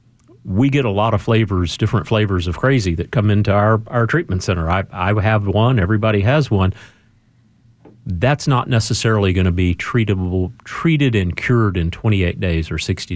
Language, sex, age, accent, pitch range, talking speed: English, male, 40-59, American, 90-115 Hz, 180 wpm